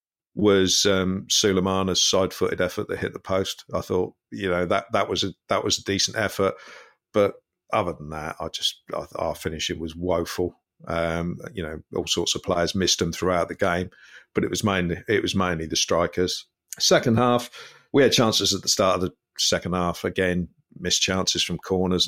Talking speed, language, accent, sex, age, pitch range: 195 wpm, English, British, male, 50-69, 90-105 Hz